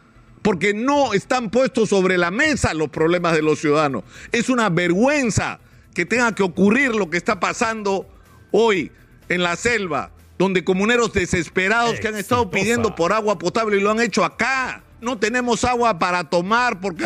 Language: Spanish